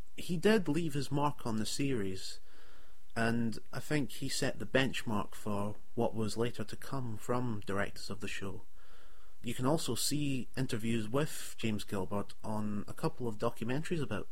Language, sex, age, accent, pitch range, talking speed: English, male, 30-49, British, 100-125 Hz, 170 wpm